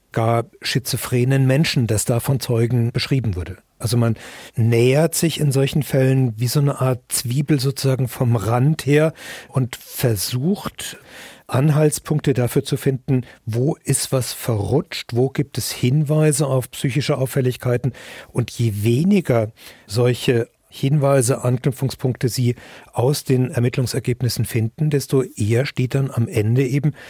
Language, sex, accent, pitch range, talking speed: German, male, German, 120-140 Hz, 130 wpm